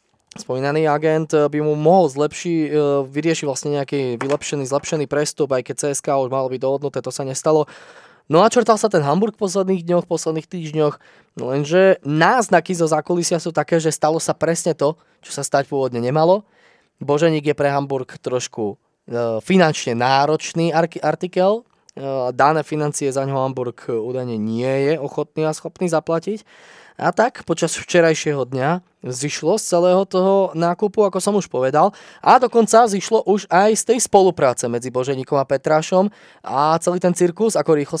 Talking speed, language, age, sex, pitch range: 160 wpm, Slovak, 20-39, male, 140-180 Hz